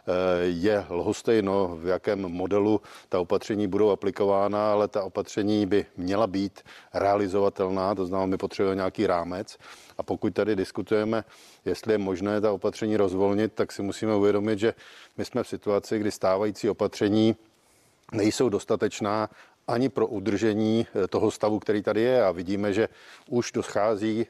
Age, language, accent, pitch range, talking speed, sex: 40-59, Czech, native, 95-110 Hz, 145 wpm, male